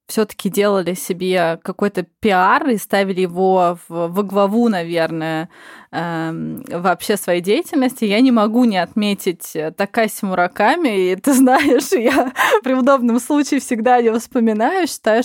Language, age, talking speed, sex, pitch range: Russian, 20-39, 135 wpm, female, 185-235 Hz